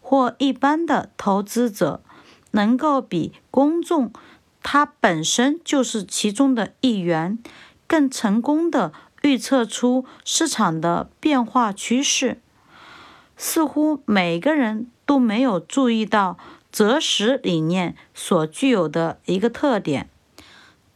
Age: 50-69